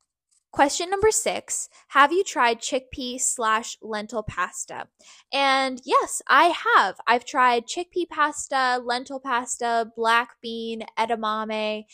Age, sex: 10-29, female